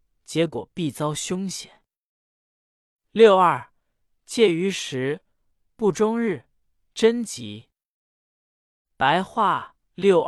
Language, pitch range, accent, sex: Chinese, 135-200 Hz, native, male